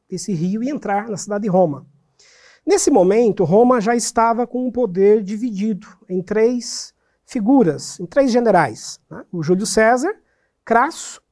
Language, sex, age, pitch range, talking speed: Portuguese, male, 50-69, 185-240 Hz, 155 wpm